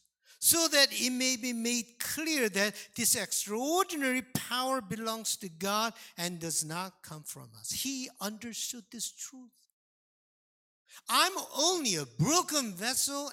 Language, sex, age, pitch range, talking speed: English, male, 50-69, 175-250 Hz, 130 wpm